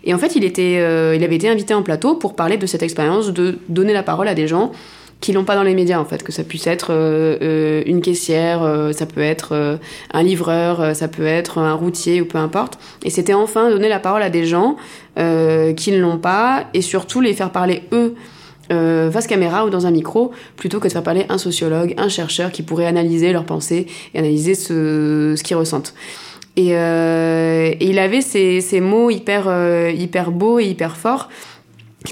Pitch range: 160-195 Hz